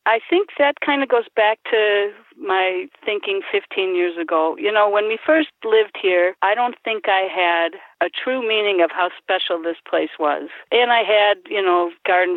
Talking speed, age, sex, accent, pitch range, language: 195 wpm, 50-69, female, American, 170-230 Hz, English